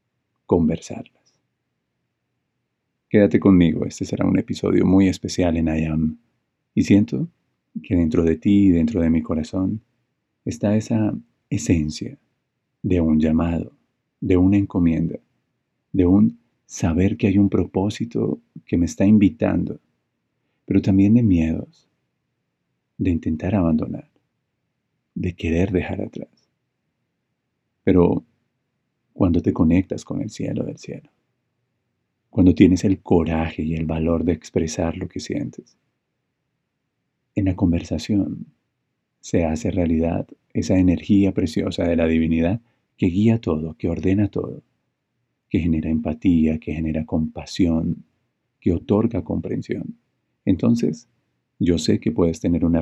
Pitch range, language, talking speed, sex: 80-100 Hz, Spanish, 125 wpm, male